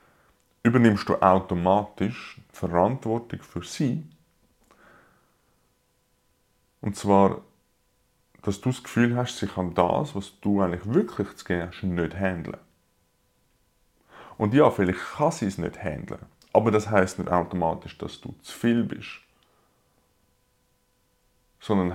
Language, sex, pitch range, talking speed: German, male, 90-110 Hz, 125 wpm